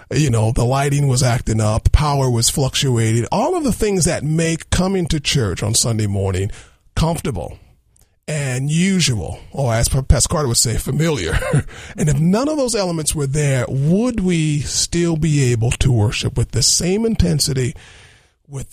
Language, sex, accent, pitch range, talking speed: English, male, American, 110-155 Hz, 165 wpm